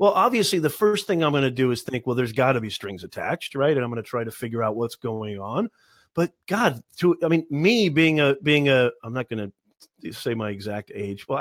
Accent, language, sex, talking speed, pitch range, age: American, English, male, 260 wpm, 125-165 Hz, 30-49